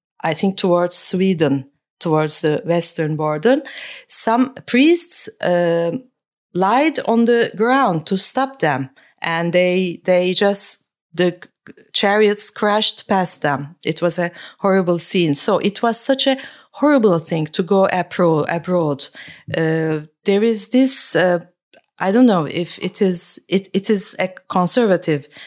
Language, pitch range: English, 165-225 Hz